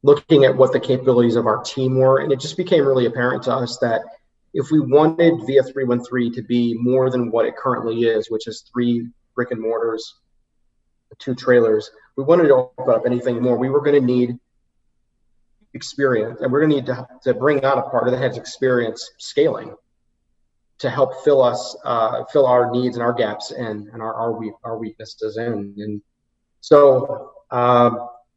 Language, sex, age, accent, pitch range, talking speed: English, male, 30-49, American, 115-130 Hz, 185 wpm